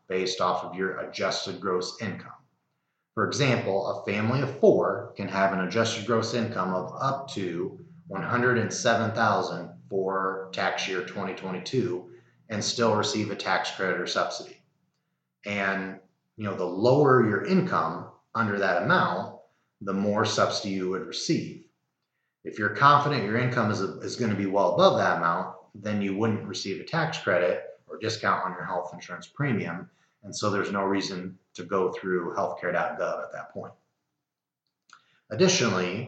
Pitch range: 95-115 Hz